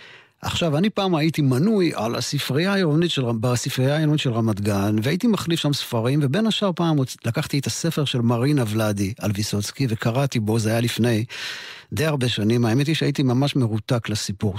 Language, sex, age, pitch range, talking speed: Hebrew, male, 50-69, 115-155 Hz, 170 wpm